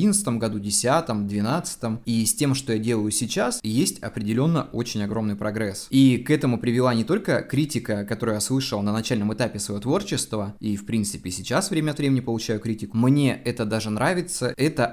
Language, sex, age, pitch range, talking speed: Russian, male, 20-39, 110-140 Hz, 175 wpm